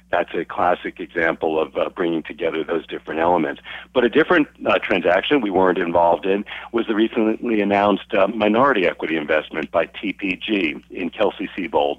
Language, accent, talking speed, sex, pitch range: English, American, 165 wpm, male, 85-100 Hz